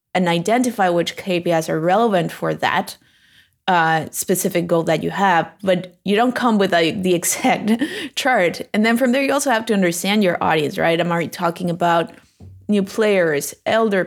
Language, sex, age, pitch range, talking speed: English, female, 20-39, 165-195 Hz, 180 wpm